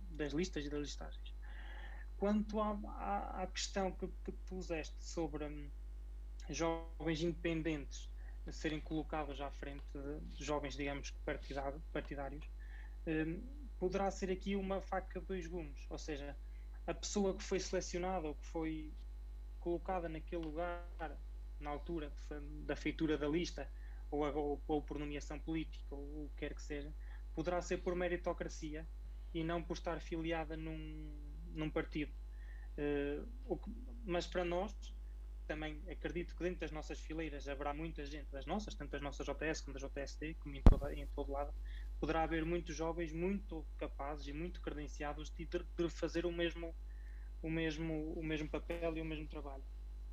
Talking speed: 155 wpm